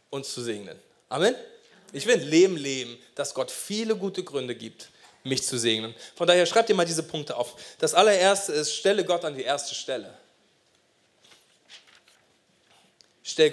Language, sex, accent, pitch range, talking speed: German, male, German, 155-210 Hz, 155 wpm